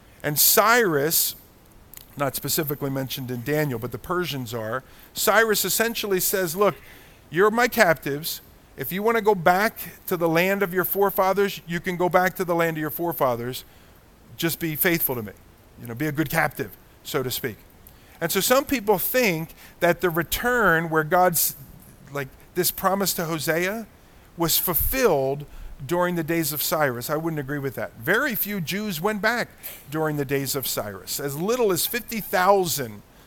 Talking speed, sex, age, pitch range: 170 wpm, male, 50-69, 135-185 Hz